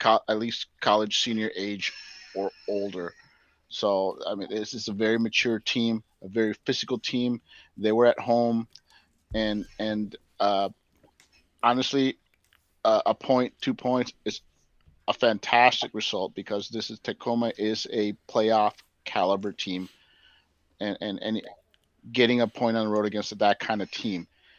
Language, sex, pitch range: English, male, 105-125 Hz